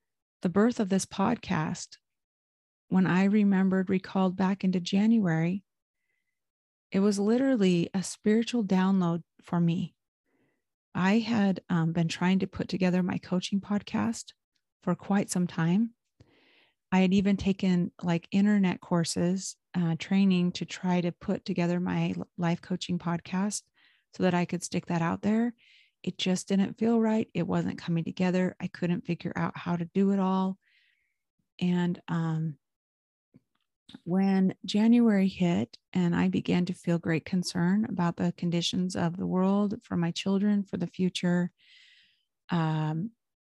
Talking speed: 145 wpm